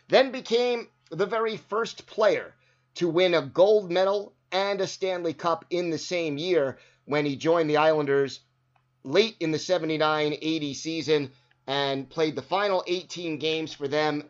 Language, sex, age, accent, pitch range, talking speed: English, male, 30-49, American, 140-180 Hz, 155 wpm